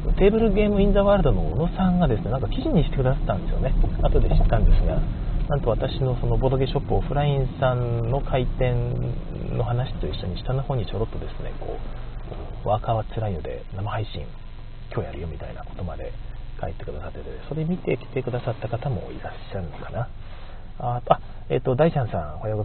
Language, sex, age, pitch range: Japanese, male, 40-59, 90-130 Hz